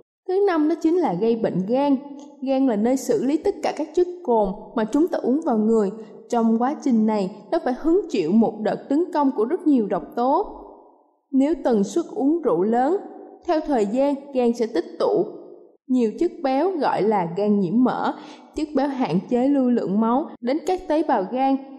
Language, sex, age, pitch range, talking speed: Vietnamese, female, 10-29, 230-310 Hz, 205 wpm